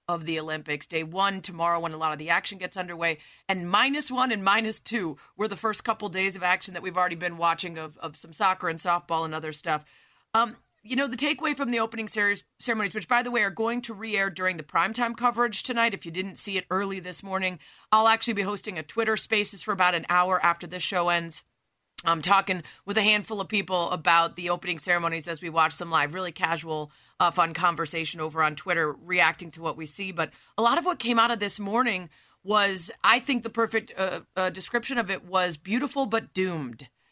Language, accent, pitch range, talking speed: English, American, 175-220 Hz, 225 wpm